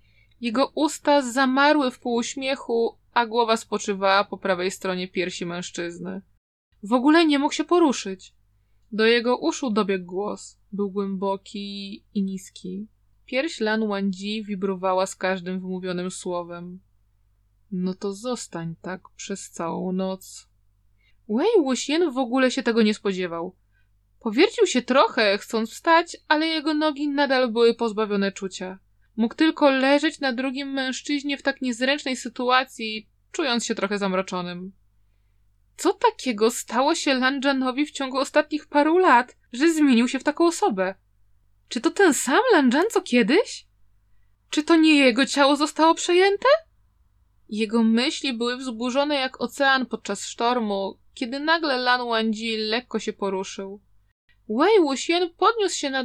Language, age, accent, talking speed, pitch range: Polish, 20-39, native, 135 wpm, 190-275 Hz